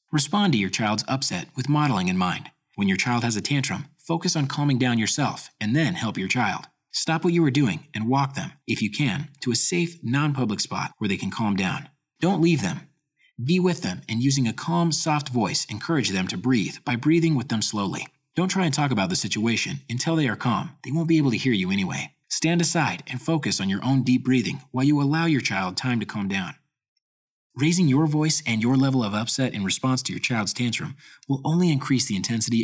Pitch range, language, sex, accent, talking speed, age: 110-155 Hz, English, male, American, 225 wpm, 30-49